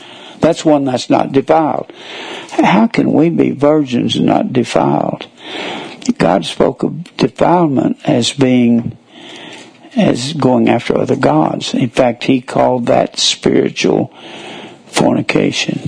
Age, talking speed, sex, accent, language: 60-79, 115 wpm, male, American, English